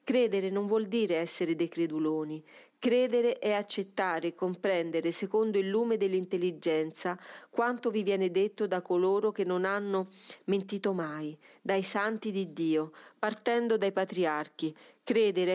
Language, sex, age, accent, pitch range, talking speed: Italian, female, 40-59, native, 170-215 Hz, 135 wpm